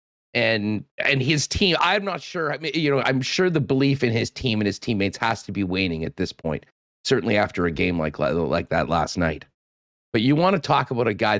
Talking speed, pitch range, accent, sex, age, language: 235 wpm, 95-125 Hz, American, male, 40-59, English